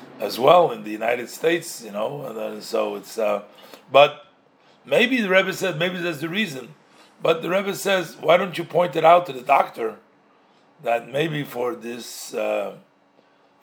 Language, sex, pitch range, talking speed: English, male, 115-165 Hz, 175 wpm